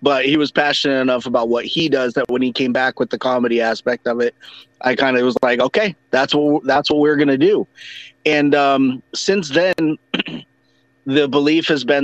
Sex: male